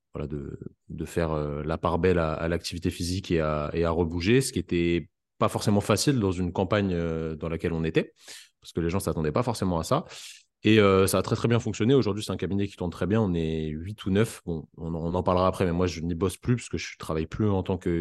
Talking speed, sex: 275 wpm, male